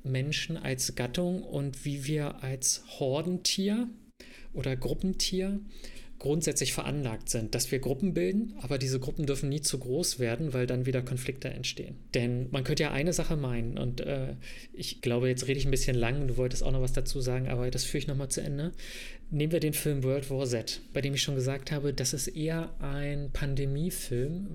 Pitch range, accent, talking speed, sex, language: 130-150 Hz, German, 195 wpm, male, German